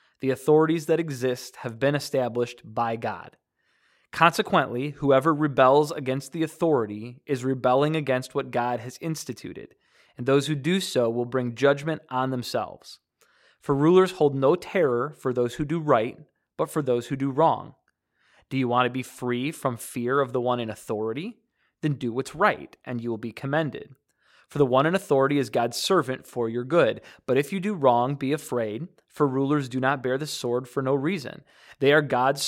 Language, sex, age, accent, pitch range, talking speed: English, male, 20-39, American, 125-155 Hz, 185 wpm